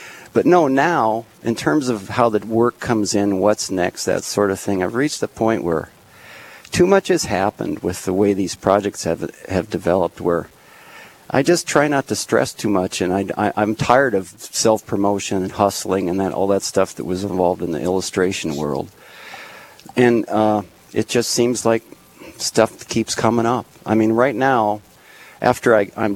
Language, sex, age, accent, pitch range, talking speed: English, male, 50-69, American, 90-110 Hz, 185 wpm